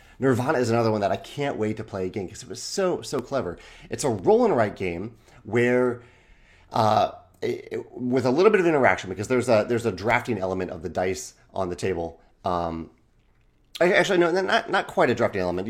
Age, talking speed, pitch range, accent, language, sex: 30-49, 210 wpm, 95-120 Hz, American, English, male